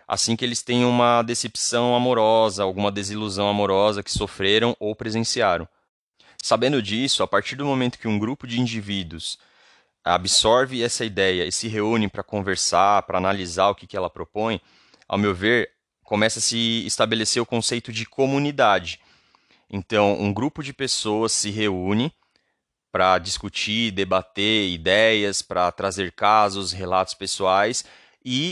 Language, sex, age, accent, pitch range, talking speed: Portuguese, male, 30-49, Brazilian, 105-125 Hz, 145 wpm